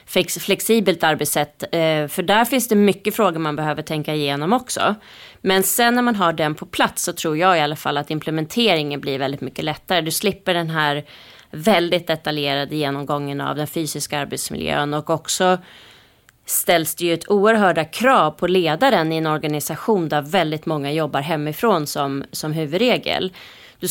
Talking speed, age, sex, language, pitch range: 165 wpm, 30-49, female, Swedish, 155-185 Hz